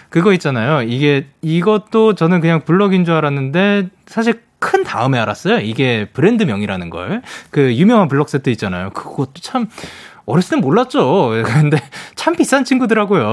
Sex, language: male, Korean